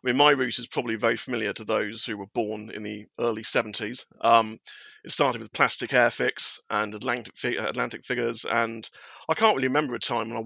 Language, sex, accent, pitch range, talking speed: English, male, British, 115-135 Hz, 210 wpm